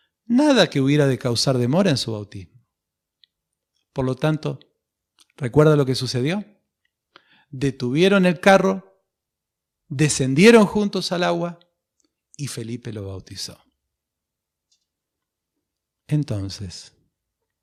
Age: 40-59